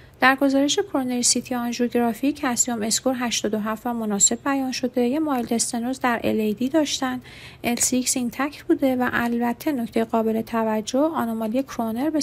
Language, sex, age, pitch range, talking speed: Persian, female, 40-59, 225-275 Hz, 145 wpm